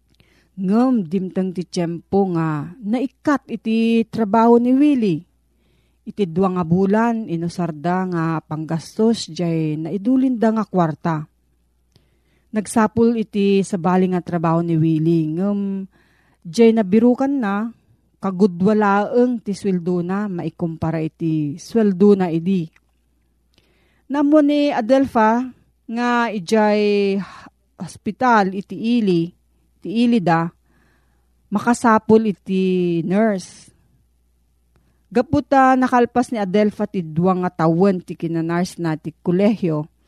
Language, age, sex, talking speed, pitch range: Filipino, 40-59, female, 105 wpm, 165-225 Hz